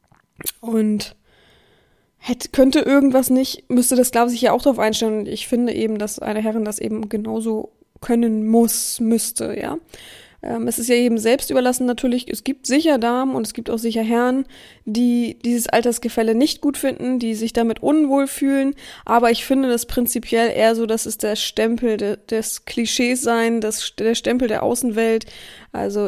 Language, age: German, 20-39